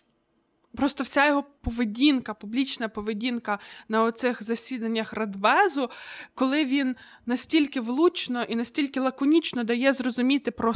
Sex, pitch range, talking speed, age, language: female, 220-260 Hz, 110 wpm, 20-39, Ukrainian